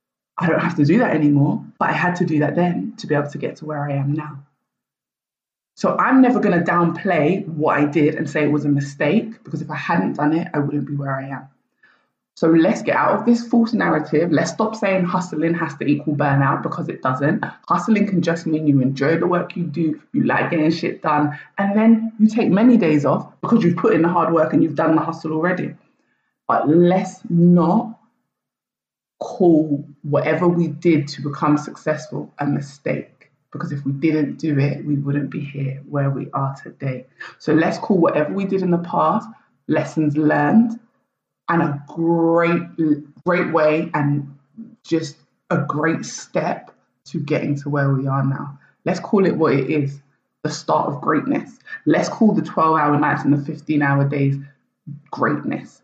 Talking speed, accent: 195 wpm, British